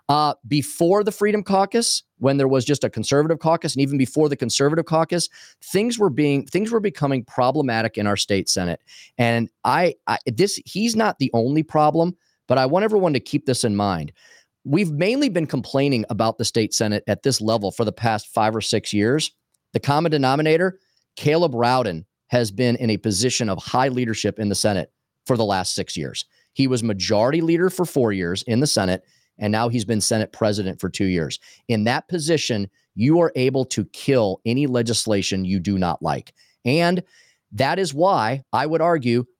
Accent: American